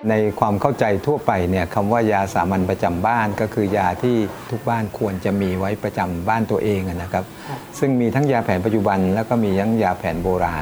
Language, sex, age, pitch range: Thai, male, 60-79, 95-125 Hz